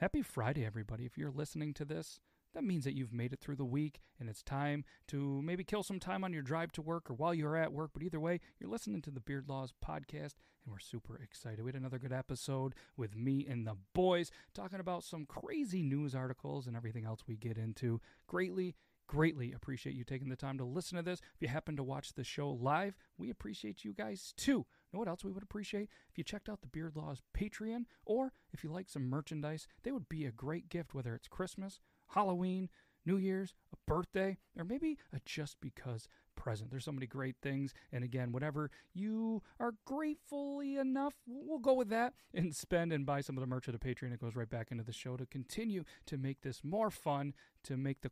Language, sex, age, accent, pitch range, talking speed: English, male, 40-59, American, 125-180 Hz, 220 wpm